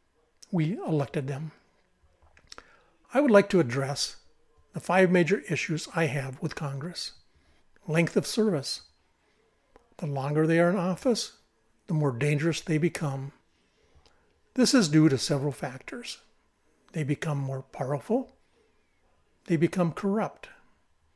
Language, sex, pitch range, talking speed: English, male, 145-185 Hz, 120 wpm